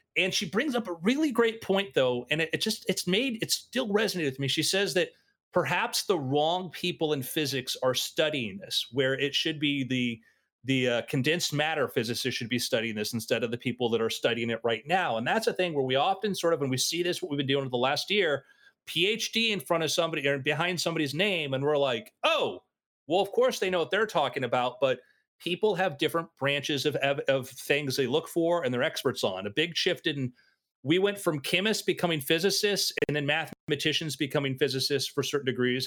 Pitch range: 130-175 Hz